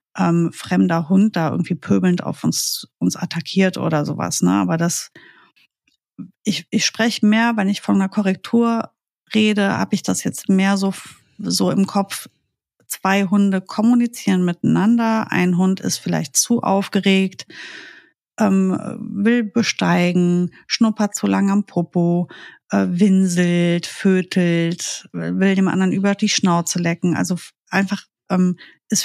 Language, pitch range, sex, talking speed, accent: German, 170-200 Hz, female, 135 wpm, German